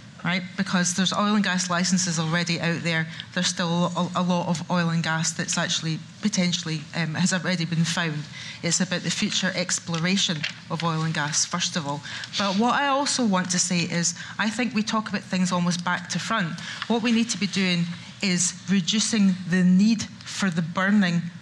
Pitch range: 170-200 Hz